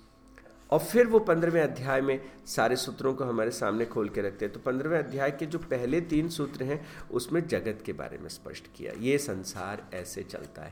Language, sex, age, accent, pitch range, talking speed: Hindi, male, 50-69, native, 105-150 Hz, 195 wpm